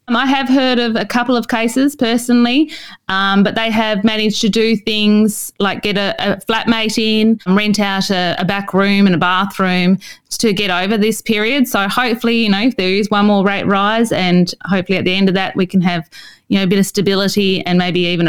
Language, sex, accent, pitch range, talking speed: English, female, Australian, 170-215 Hz, 225 wpm